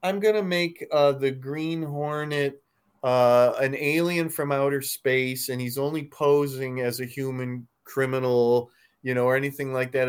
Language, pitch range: English, 120-145 Hz